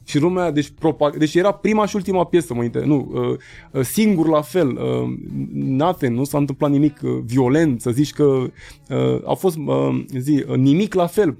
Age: 20-39